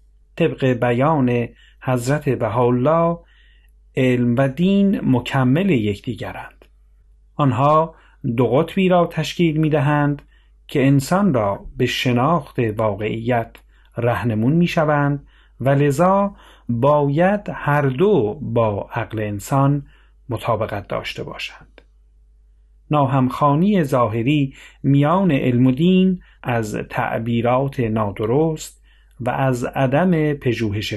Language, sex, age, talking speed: Persian, male, 40-59, 90 wpm